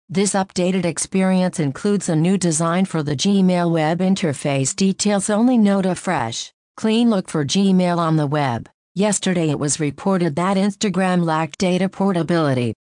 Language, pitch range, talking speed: English, 160-195 Hz, 155 wpm